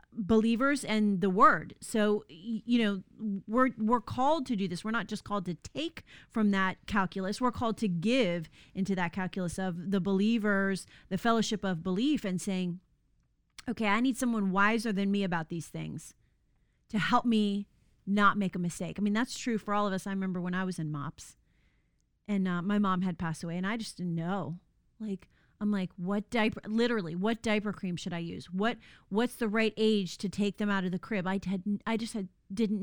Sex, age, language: female, 30-49, English